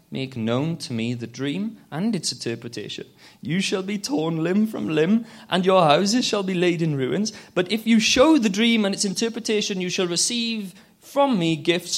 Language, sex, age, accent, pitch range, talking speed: English, male, 30-49, British, 140-225 Hz, 195 wpm